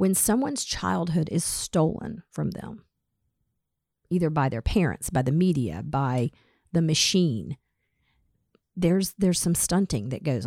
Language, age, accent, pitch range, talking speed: English, 40-59, American, 150-185 Hz, 130 wpm